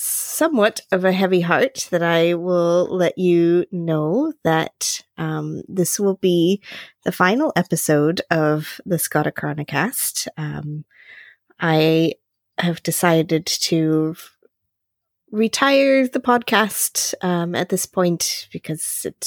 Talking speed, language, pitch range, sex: 115 wpm, English, 165-205 Hz, female